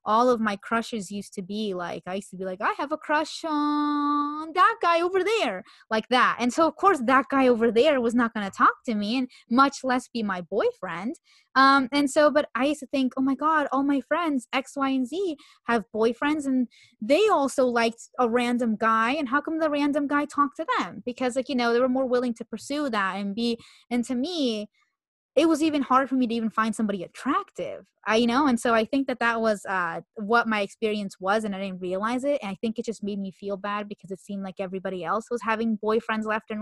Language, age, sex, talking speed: English, 20-39, female, 245 wpm